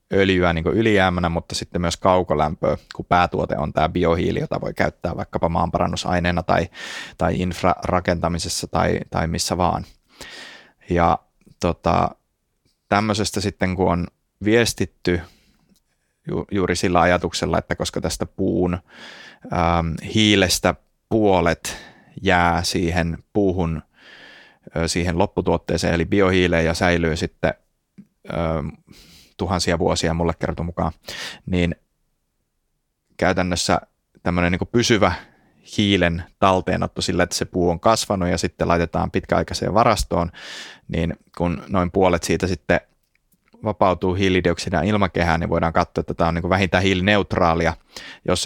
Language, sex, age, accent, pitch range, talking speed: Finnish, male, 20-39, native, 85-95 Hz, 120 wpm